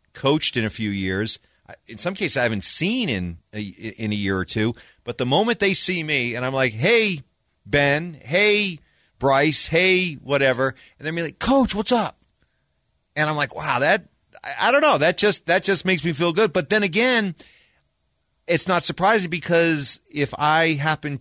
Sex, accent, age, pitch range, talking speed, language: male, American, 40-59, 120-170 Hz, 185 wpm, English